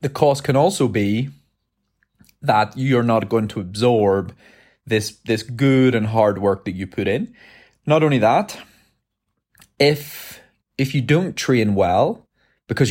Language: English